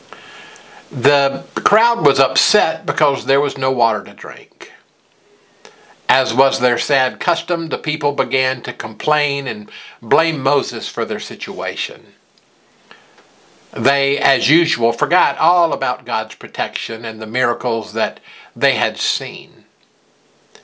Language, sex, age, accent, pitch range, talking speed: English, male, 50-69, American, 125-165 Hz, 120 wpm